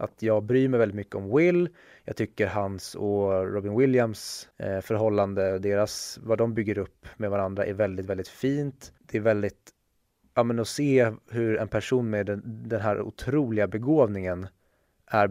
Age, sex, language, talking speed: 20-39, male, Swedish, 170 wpm